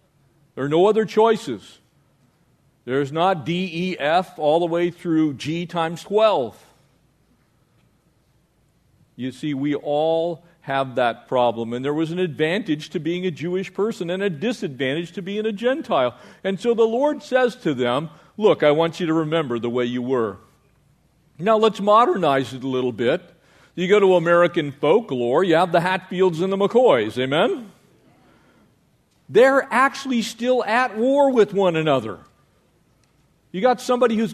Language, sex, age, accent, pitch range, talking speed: English, male, 50-69, American, 155-225 Hz, 155 wpm